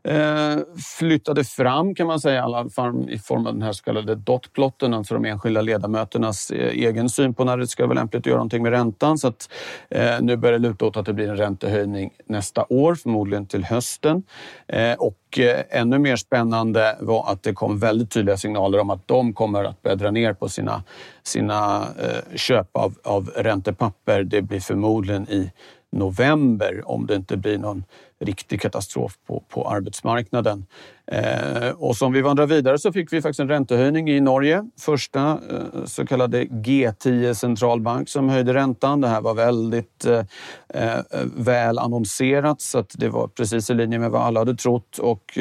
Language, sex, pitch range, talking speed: Swedish, male, 105-130 Hz, 170 wpm